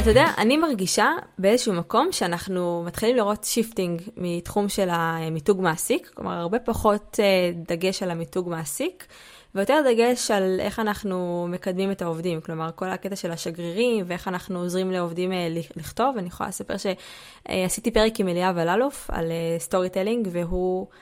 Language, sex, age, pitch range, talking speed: Hebrew, female, 20-39, 175-220 Hz, 145 wpm